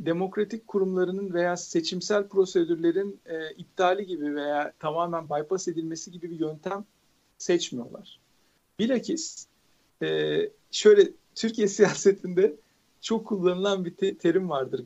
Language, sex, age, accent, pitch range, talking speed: Turkish, male, 50-69, native, 175-240 Hz, 110 wpm